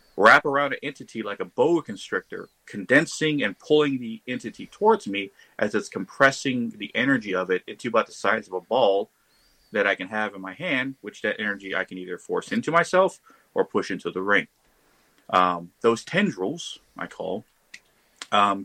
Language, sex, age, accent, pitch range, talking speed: English, male, 30-49, American, 100-130 Hz, 180 wpm